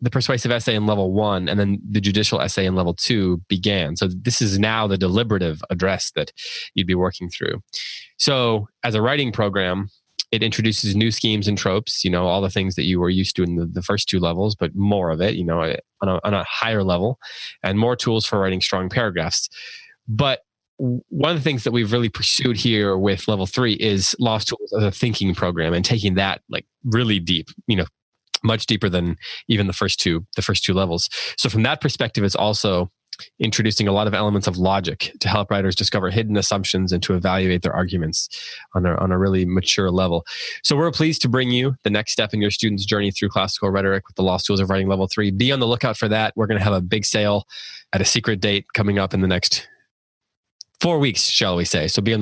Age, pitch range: 20-39, 95-110 Hz